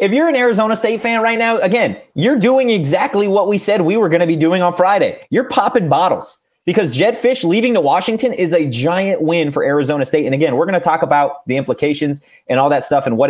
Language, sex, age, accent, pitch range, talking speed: English, male, 30-49, American, 130-170 Hz, 245 wpm